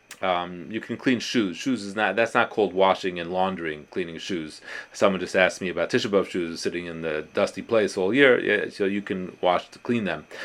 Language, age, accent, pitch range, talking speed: English, 30-49, American, 90-115 Hz, 220 wpm